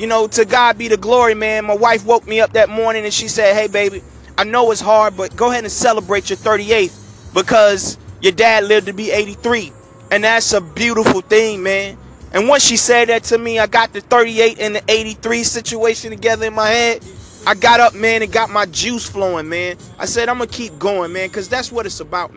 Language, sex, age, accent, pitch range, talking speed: English, male, 20-39, American, 205-235 Hz, 230 wpm